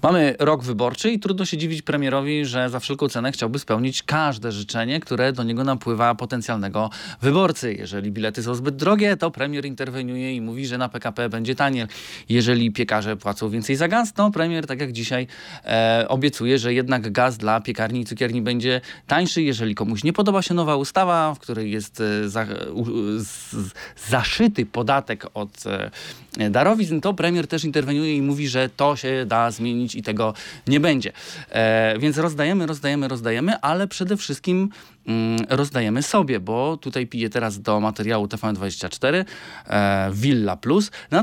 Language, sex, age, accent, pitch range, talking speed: Polish, male, 20-39, native, 115-150 Hz, 160 wpm